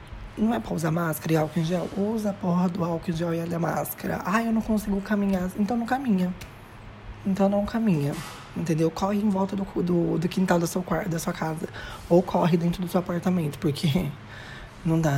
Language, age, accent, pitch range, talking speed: Portuguese, 20-39, Brazilian, 160-200 Hz, 200 wpm